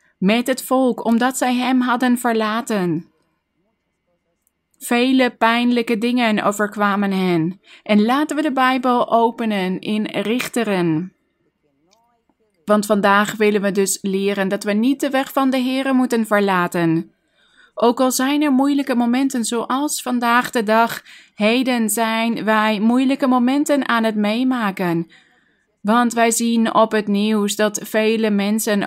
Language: Dutch